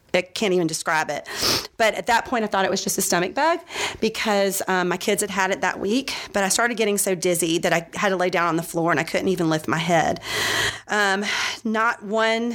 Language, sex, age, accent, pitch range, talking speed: English, female, 30-49, American, 180-230 Hz, 245 wpm